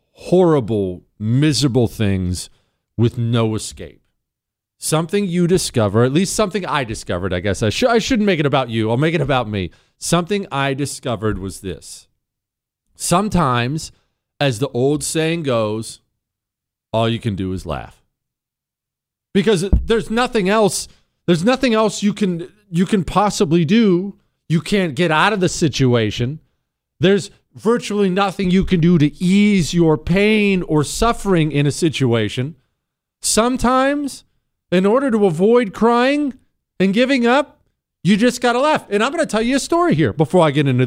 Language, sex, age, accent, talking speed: English, male, 40-59, American, 160 wpm